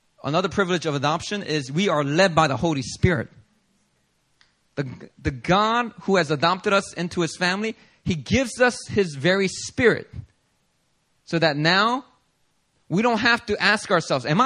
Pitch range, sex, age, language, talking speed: 155-220 Hz, male, 30-49, English, 160 wpm